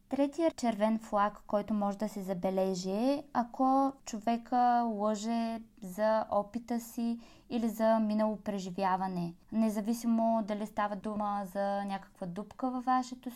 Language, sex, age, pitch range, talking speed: Bulgarian, female, 20-39, 195-230 Hz, 125 wpm